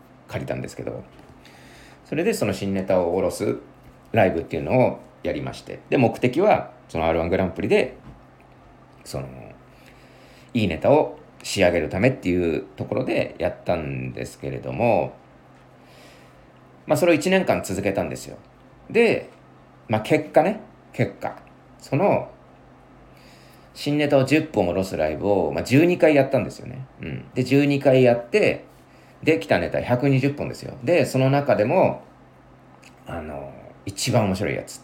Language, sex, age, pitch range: Japanese, male, 40-59, 90-140 Hz